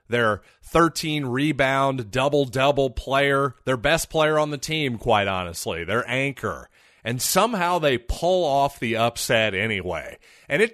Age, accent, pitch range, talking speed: 30-49, American, 115-155 Hz, 145 wpm